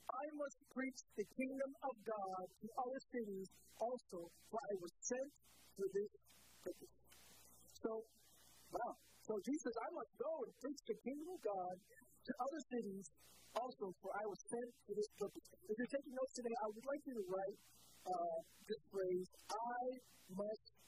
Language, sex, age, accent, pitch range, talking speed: English, male, 50-69, American, 190-245 Hz, 165 wpm